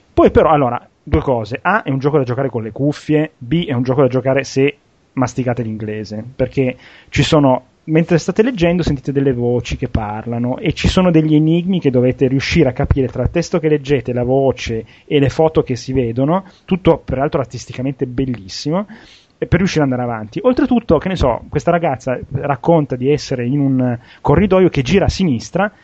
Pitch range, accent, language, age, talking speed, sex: 125-165 Hz, native, Italian, 30-49, 190 wpm, male